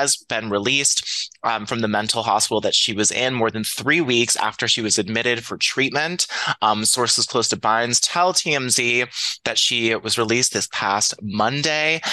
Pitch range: 105-125 Hz